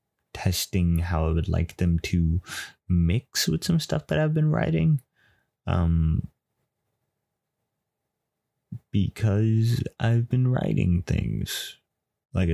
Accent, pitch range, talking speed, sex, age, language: American, 85-110 Hz, 105 wpm, male, 20-39, English